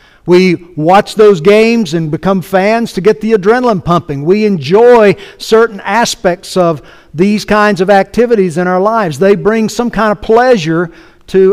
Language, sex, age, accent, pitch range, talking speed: English, male, 60-79, American, 165-210 Hz, 160 wpm